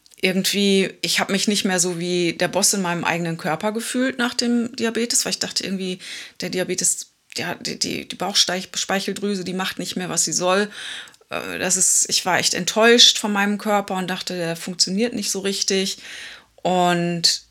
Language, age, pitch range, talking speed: German, 20-39, 160-200 Hz, 170 wpm